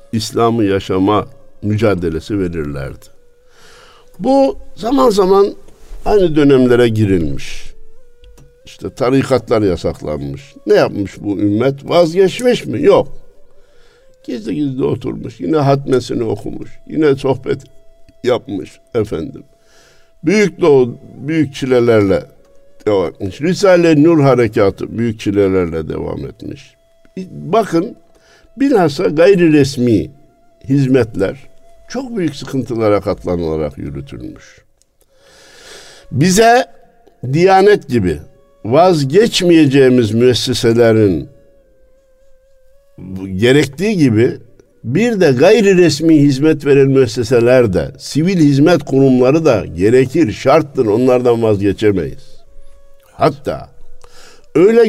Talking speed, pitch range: 85 wpm, 120-195 Hz